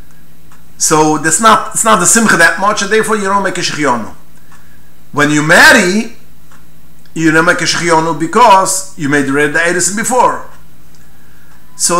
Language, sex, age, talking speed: English, male, 50-69, 155 wpm